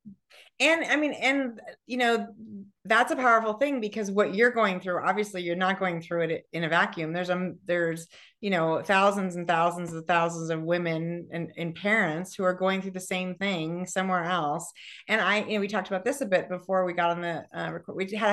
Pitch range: 170-220 Hz